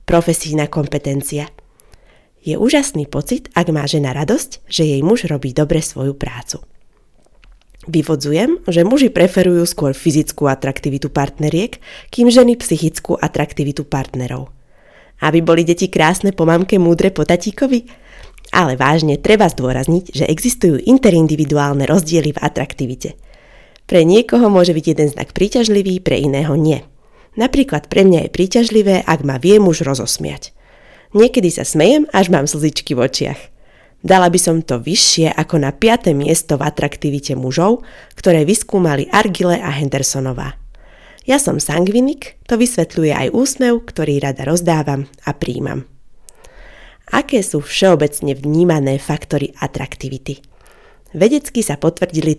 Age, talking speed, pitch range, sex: 20-39, 130 wpm, 145-195 Hz, female